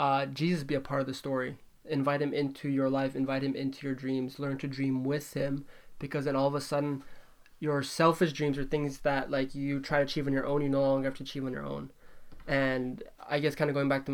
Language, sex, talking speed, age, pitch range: English, male, 255 wpm, 20-39, 135-145 Hz